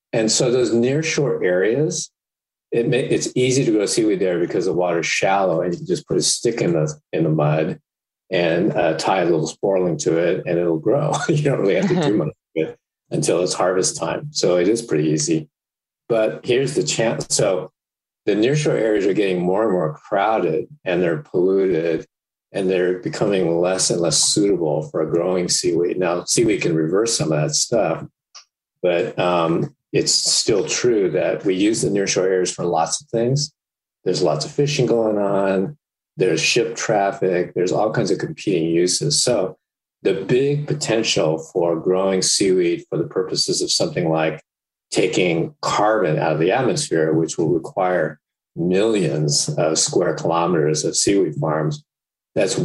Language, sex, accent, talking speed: English, male, American, 180 wpm